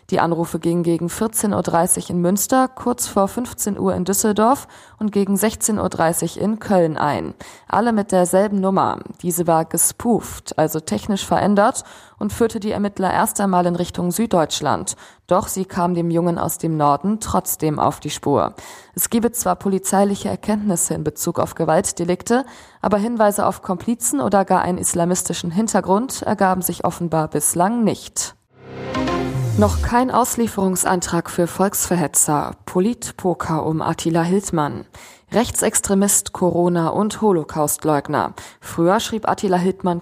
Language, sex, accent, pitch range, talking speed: German, female, German, 165-205 Hz, 140 wpm